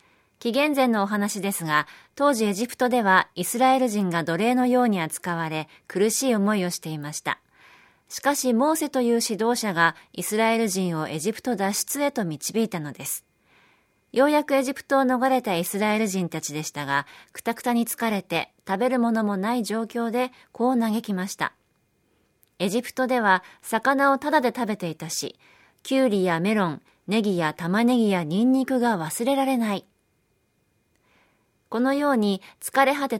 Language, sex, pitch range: Japanese, female, 180-250 Hz